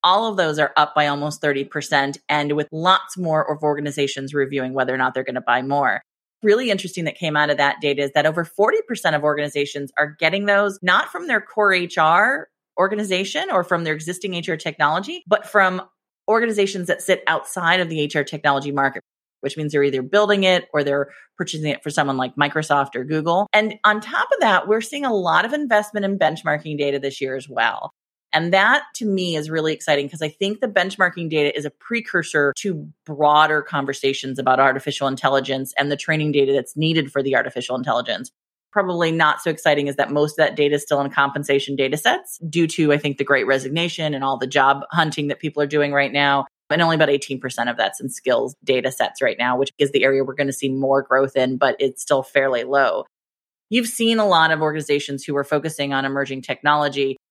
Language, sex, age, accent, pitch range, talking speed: English, female, 30-49, American, 140-175 Hz, 215 wpm